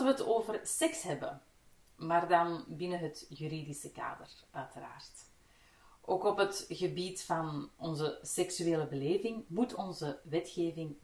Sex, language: female, Dutch